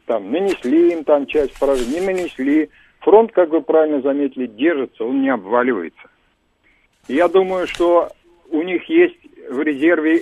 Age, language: 50-69, Russian